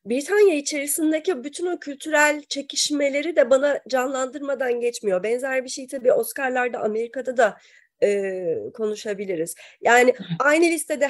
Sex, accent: female, native